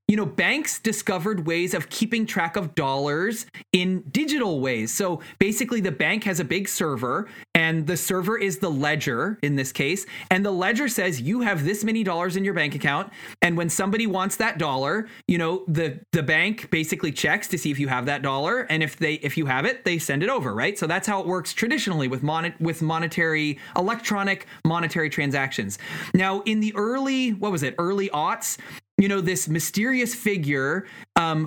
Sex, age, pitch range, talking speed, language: male, 30-49, 155-200 Hz, 195 wpm, English